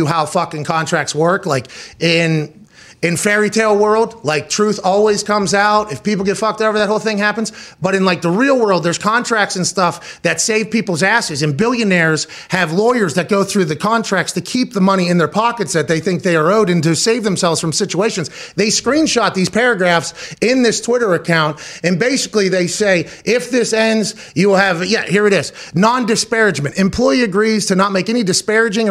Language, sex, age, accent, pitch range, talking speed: English, male, 30-49, American, 180-220 Hz, 200 wpm